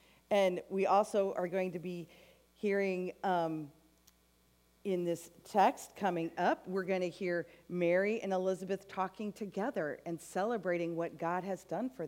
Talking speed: 150 wpm